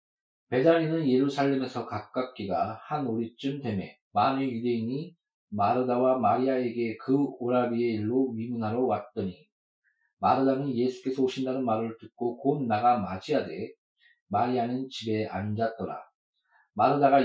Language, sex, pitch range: Korean, male, 115-140 Hz